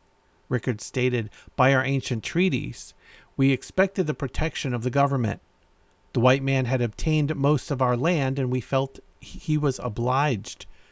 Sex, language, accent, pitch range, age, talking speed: male, English, American, 105-140 Hz, 50-69, 155 wpm